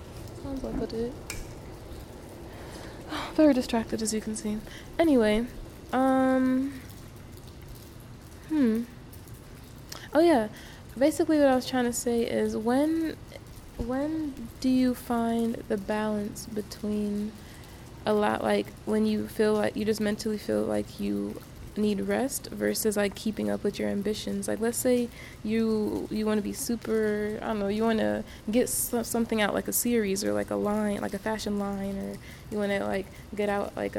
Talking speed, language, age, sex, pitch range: 155 wpm, English, 20-39, female, 195-230 Hz